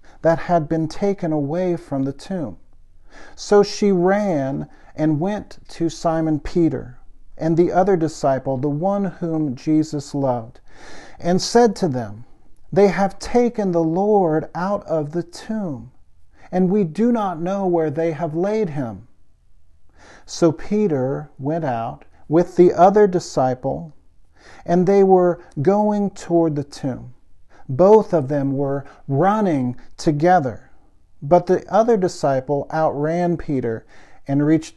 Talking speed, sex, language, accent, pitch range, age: 135 wpm, male, English, American, 135-180 Hz, 50-69